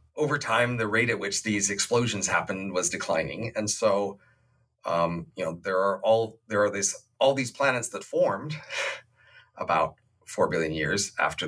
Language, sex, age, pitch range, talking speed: English, male, 40-59, 105-125 Hz, 155 wpm